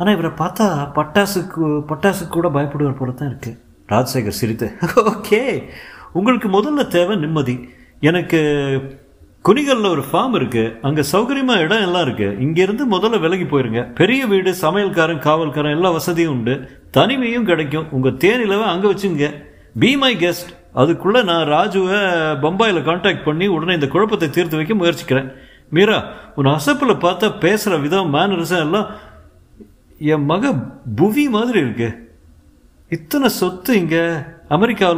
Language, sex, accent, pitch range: Tamil, male, native, 115-185 Hz